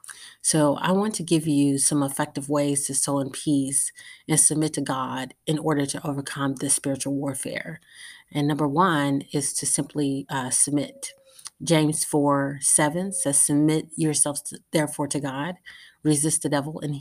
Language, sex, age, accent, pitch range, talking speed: English, female, 30-49, American, 140-155 Hz, 155 wpm